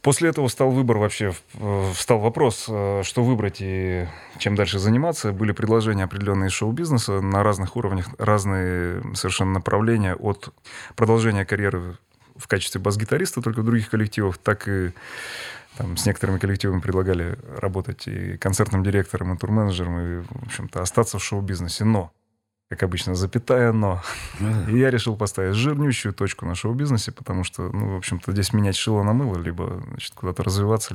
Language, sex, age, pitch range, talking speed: Russian, male, 20-39, 95-120 Hz, 155 wpm